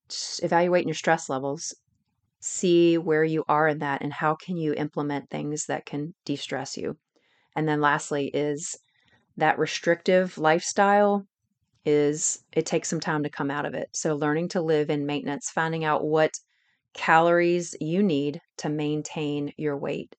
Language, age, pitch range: English, 30-49, 145-170 Hz